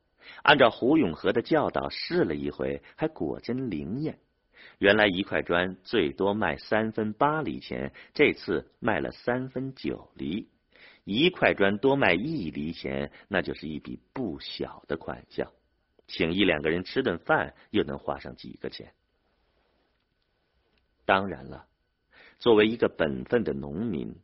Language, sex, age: Chinese, male, 50-69